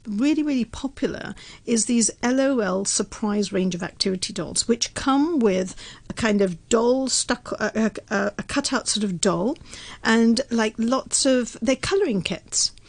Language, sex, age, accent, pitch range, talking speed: English, female, 50-69, British, 205-260 Hz, 150 wpm